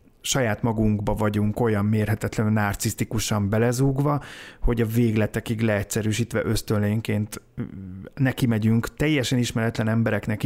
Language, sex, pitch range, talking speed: Hungarian, male, 105-125 Hz, 100 wpm